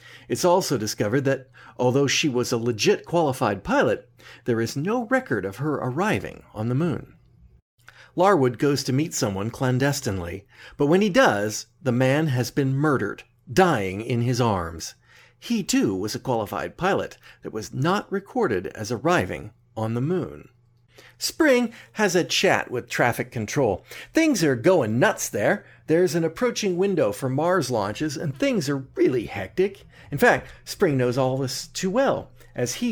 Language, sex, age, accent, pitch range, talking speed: English, male, 40-59, American, 120-165 Hz, 160 wpm